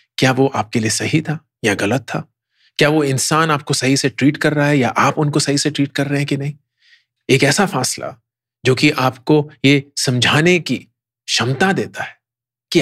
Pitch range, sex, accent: 125-195 Hz, male, Indian